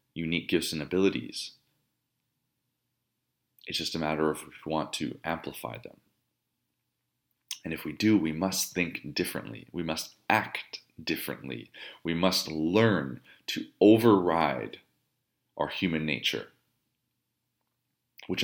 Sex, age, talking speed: male, 30-49, 115 wpm